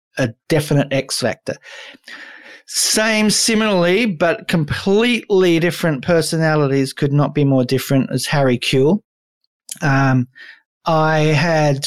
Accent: Australian